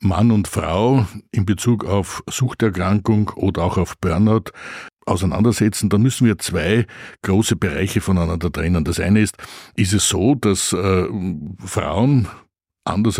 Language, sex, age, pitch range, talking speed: German, male, 60-79, 95-115 Hz, 135 wpm